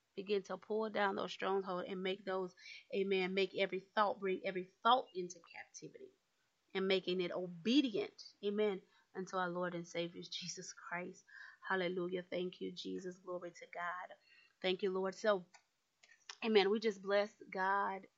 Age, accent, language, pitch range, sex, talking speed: 30-49, American, English, 185-220 Hz, female, 150 wpm